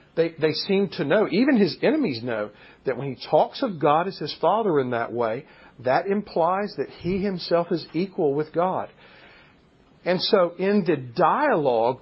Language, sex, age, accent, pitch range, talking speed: English, male, 50-69, American, 135-190 Hz, 175 wpm